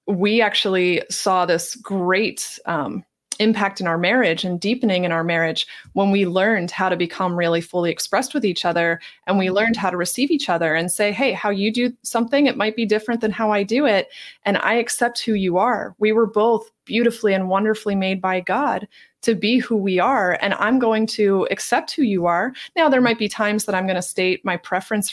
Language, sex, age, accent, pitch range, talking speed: English, female, 30-49, American, 185-230 Hz, 215 wpm